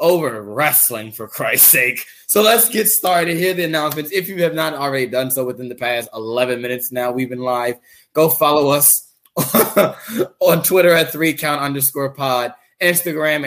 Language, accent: English, American